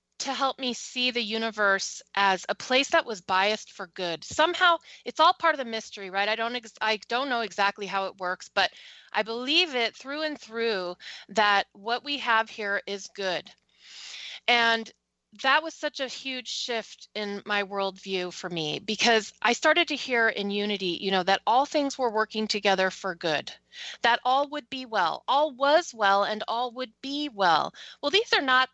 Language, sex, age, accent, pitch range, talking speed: English, female, 30-49, American, 200-245 Hz, 190 wpm